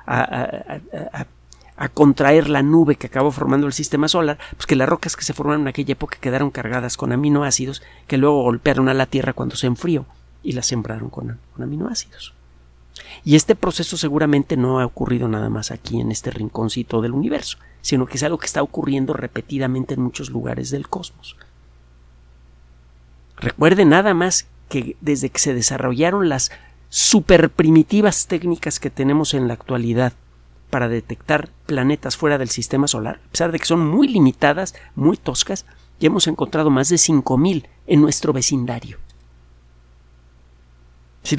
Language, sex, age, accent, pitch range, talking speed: Spanish, male, 50-69, Mexican, 110-155 Hz, 160 wpm